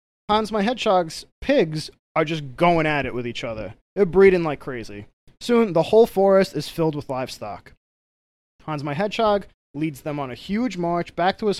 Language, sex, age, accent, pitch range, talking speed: English, male, 20-39, American, 150-195 Hz, 185 wpm